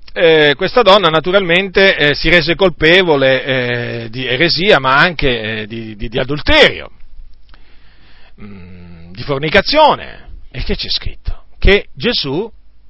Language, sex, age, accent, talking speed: Italian, male, 40-59, native, 120 wpm